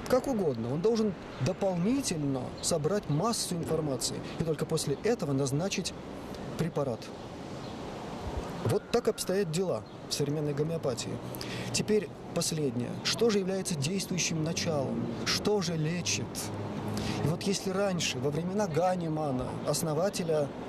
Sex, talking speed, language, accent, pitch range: male, 115 wpm, Russian, native, 140-185 Hz